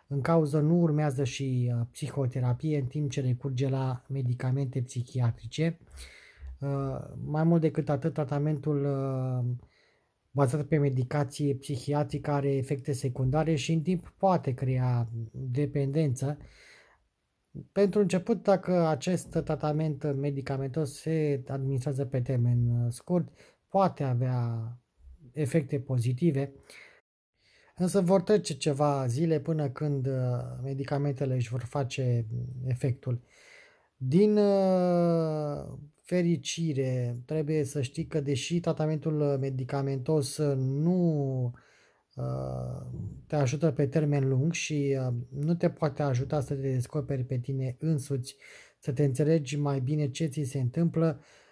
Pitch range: 130-155 Hz